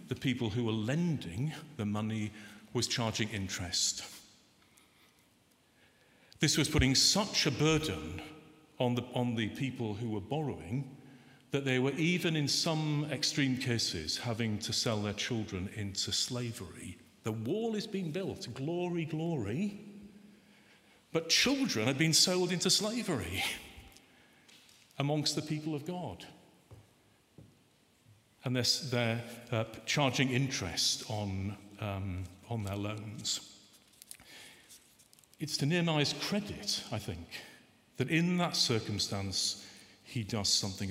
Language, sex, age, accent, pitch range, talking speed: English, male, 50-69, British, 105-155 Hz, 115 wpm